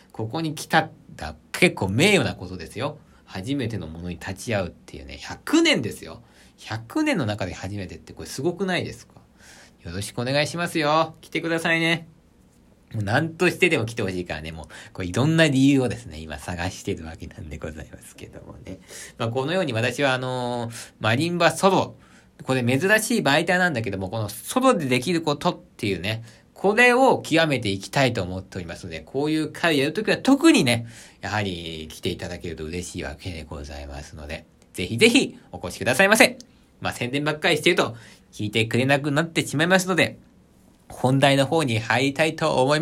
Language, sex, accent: Japanese, male, native